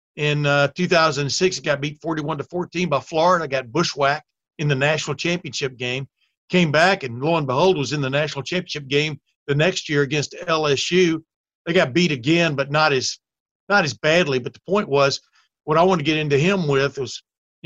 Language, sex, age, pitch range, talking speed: English, male, 60-79, 140-180 Hz, 195 wpm